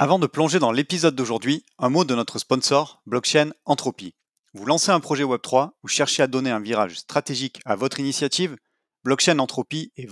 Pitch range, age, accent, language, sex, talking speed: 120-145 Hz, 30-49, French, French, male, 185 wpm